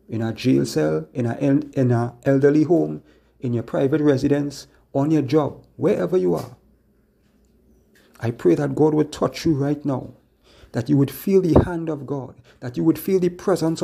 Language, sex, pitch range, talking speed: English, male, 125-160 Hz, 185 wpm